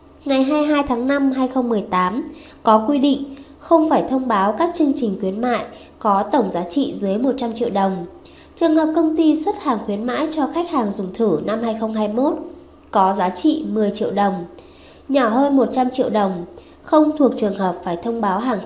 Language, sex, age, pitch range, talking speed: Vietnamese, female, 20-39, 215-295 Hz, 190 wpm